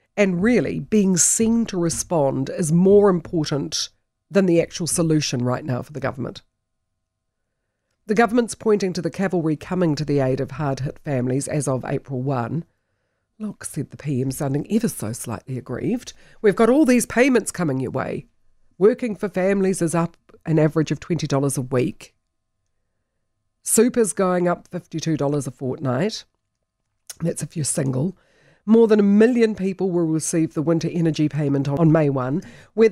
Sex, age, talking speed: female, 50-69, 160 wpm